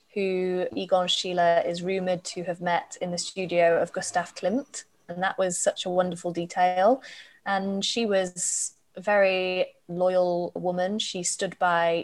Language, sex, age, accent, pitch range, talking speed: English, female, 20-39, British, 175-200 Hz, 155 wpm